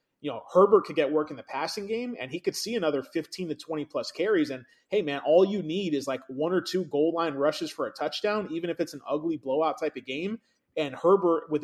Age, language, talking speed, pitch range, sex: 30-49, English, 255 wpm, 140-170 Hz, male